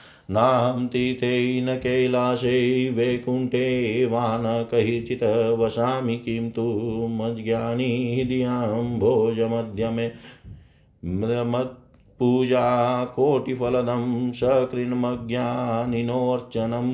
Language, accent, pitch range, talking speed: Hindi, native, 115-125 Hz, 60 wpm